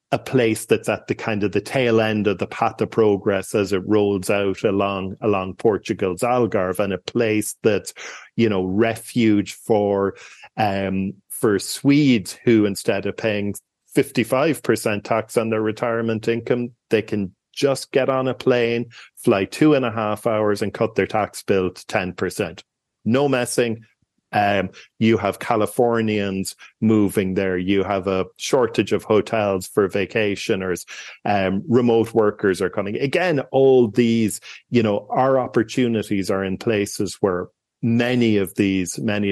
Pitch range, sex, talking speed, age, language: 100-115 Hz, male, 155 wpm, 40-59, English